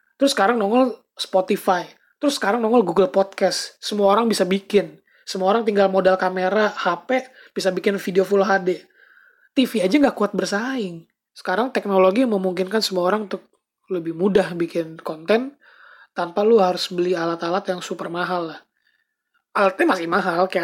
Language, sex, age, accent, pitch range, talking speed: Indonesian, male, 20-39, native, 180-220 Hz, 150 wpm